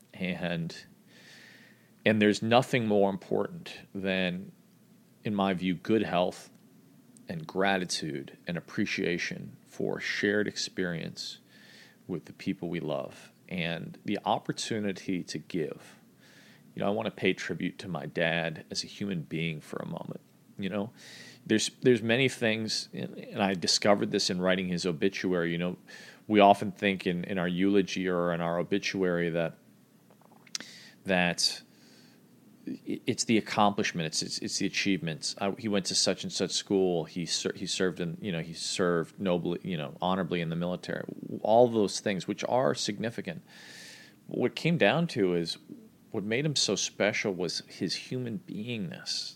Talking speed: 155 wpm